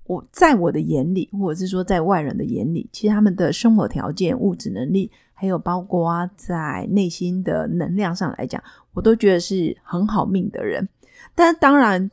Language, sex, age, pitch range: Chinese, female, 30-49, 180-225 Hz